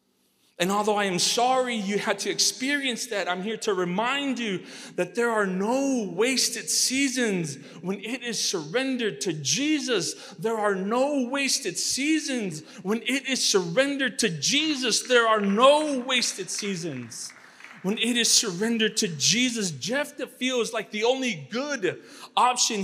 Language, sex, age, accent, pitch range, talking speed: English, male, 30-49, American, 190-255 Hz, 145 wpm